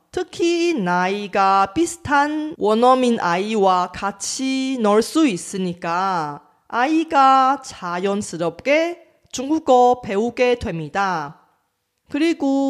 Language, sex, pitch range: Korean, female, 190-280 Hz